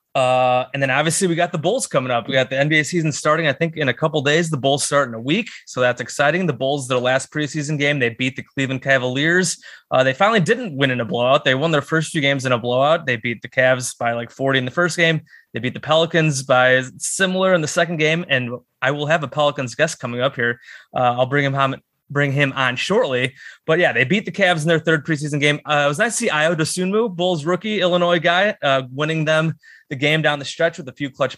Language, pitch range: English, 130-165 Hz